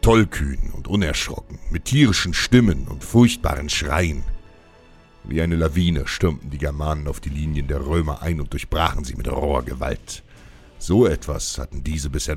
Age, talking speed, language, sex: 60-79, 155 wpm, German, male